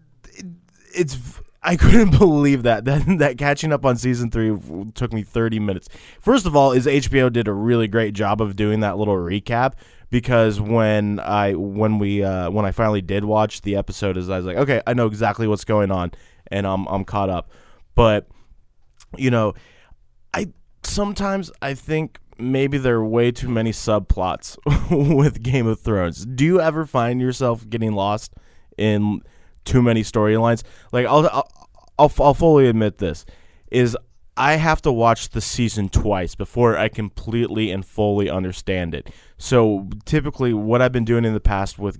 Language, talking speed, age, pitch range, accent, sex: English, 175 wpm, 20-39, 100-125 Hz, American, male